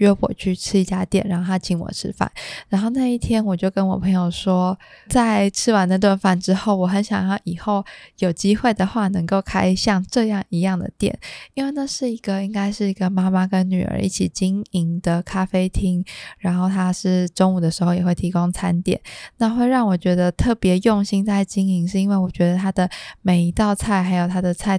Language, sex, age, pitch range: Chinese, female, 20-39, 180-205 Hz